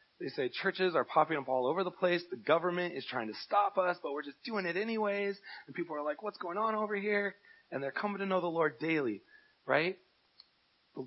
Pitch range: 130-180 Hz